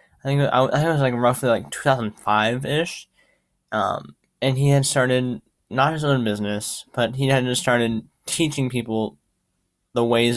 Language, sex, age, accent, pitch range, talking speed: English, male, 10-29, American, 110-130 Hz, 150 wpm